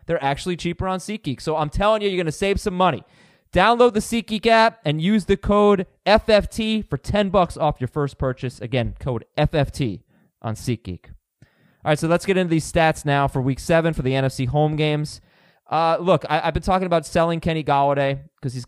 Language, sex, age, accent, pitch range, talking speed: English, male, 20-39, American, 125-165 Hz, 210 wpm